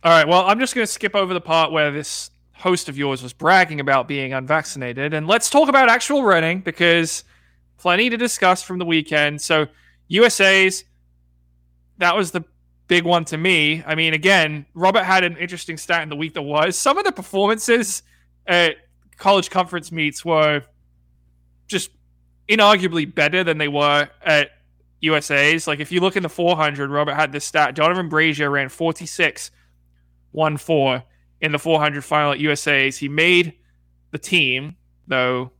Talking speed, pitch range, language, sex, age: 170 wpm, 125-175 Hz, English, male, 20-39